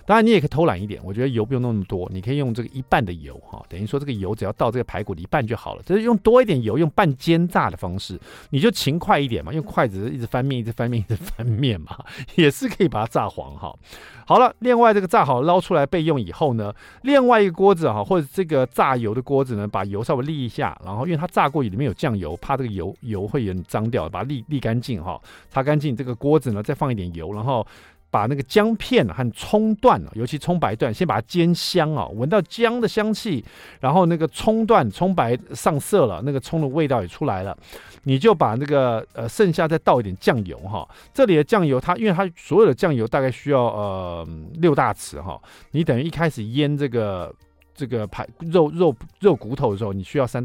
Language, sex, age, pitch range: Chinese, male, 50-69, 110-170 Hz